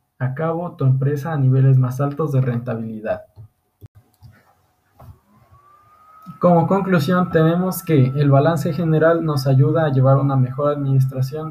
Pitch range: 130-155 Hz